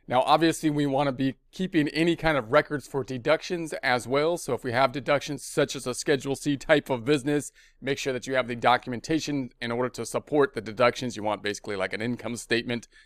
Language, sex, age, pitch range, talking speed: English, male, 30-49, 125-150 Hz, 220 wpm